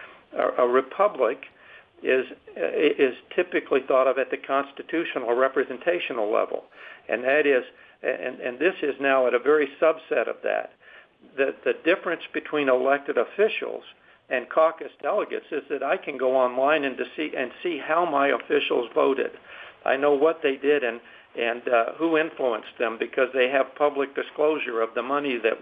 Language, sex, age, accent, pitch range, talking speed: English, male, 60-79, American, 135-185 Hz, 165 wpm